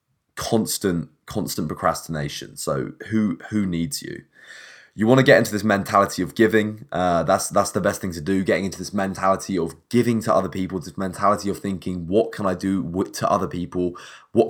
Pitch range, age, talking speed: 90-105 Hz, 20-39, 190 wpm